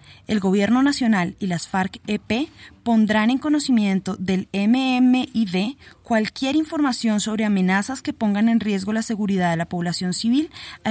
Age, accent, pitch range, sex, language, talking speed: 20-39, Colombian, 180-240 Hz, female, Spanish, 145 wpm